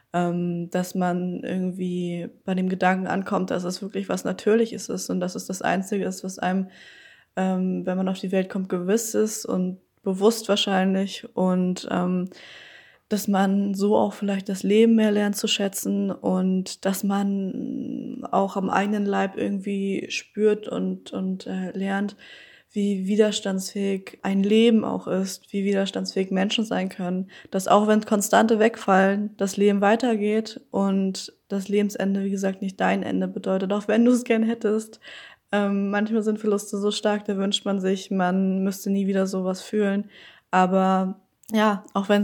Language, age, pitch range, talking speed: German, 20-39, 190-210 Hz, 155 wpm